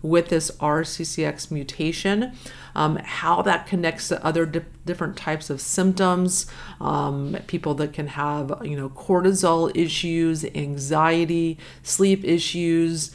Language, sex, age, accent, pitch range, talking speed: English, female, 40-59, American, 150-180 Hz, 125 wpm